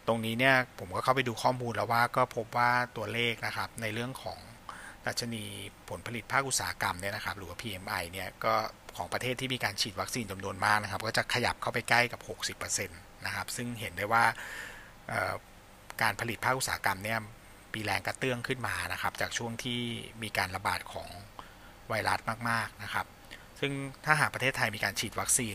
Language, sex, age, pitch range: Thai, male, 60-79, 100-120 Hz